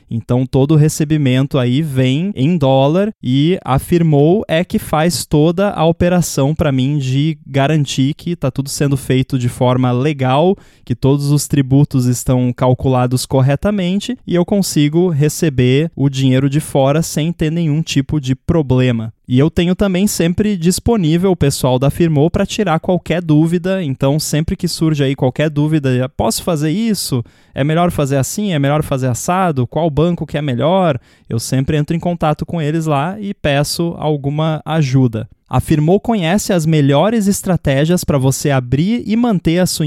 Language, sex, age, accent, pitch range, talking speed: Portuguese, male, 20-39, Brazilian, 135-180 Hz, 165 wpm